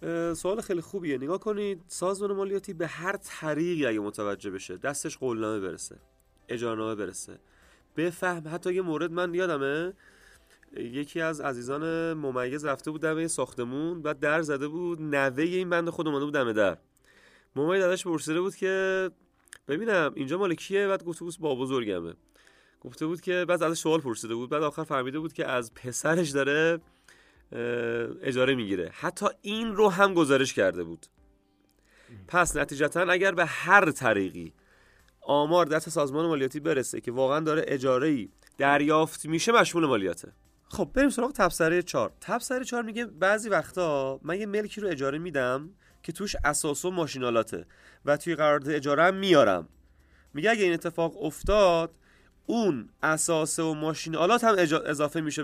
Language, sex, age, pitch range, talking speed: Persian, male, 30-49, 135-180 Hz, 155 wpm